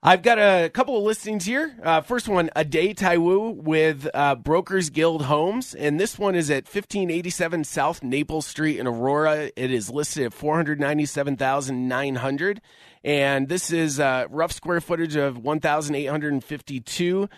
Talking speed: 150 wpm